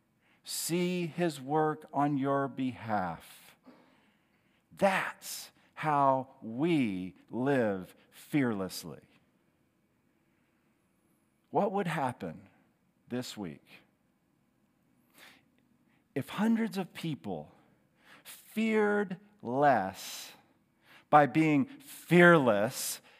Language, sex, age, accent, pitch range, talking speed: English, male, 50-69, American, 140-195 Hz, 65 wpm